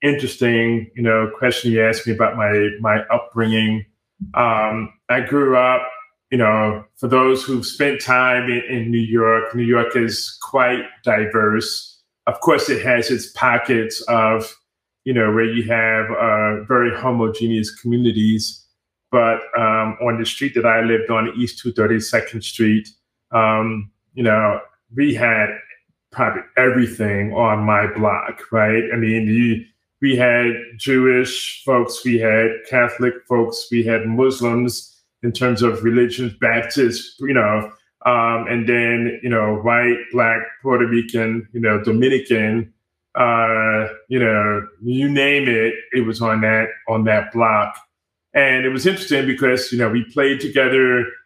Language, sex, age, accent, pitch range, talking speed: English, male, 30-49, American, 110-125 Hz, 145 wpm